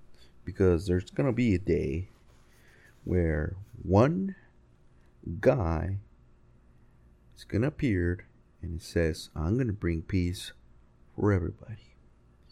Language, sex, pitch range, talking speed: English, male, 70-105 Hz, 115 wpm